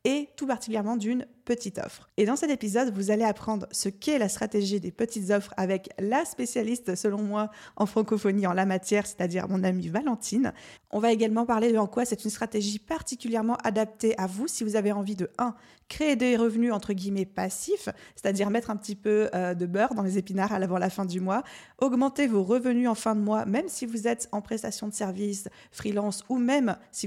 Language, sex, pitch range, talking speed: French, female, 200-235 Hz, 210 wpm